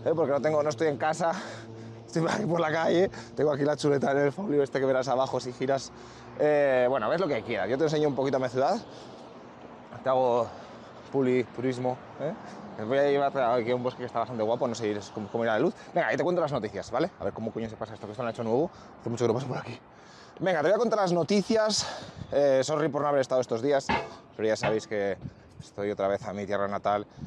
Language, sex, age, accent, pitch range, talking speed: Spanish, male, 20-39, Spanish, 115-155 Hz, 260 wpm